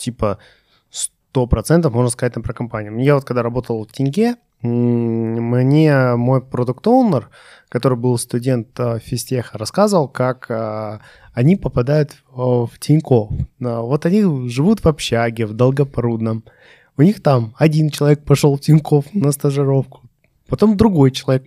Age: 20-39